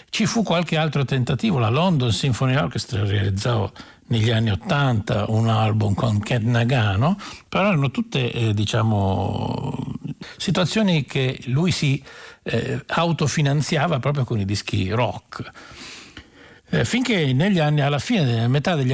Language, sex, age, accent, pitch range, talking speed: Italian, male, 60-79, native, 110-145 Hz, 135 wpm